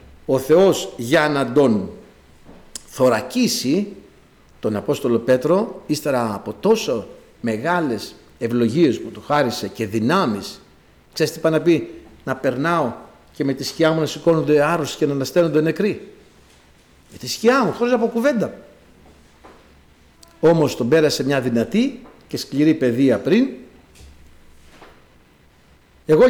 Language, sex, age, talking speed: Greek, male, 60-79, 125 wpm